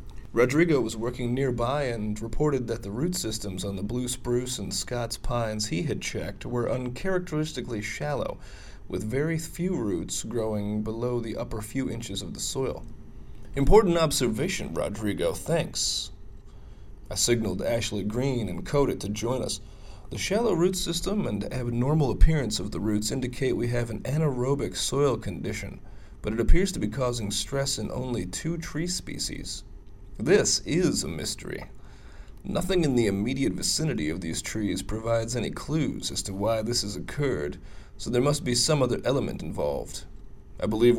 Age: 30-49